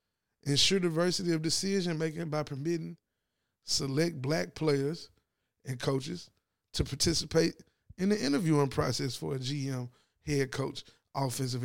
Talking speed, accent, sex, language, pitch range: 125 wpm, American, male, English, 130-150 Hz